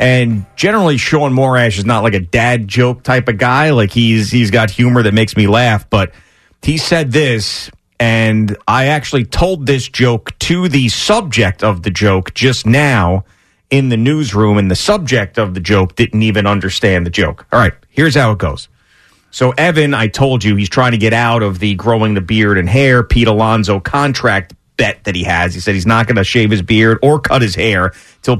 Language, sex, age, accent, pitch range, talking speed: English, male, 30-49, American, 100-130 Hz, 205 wpm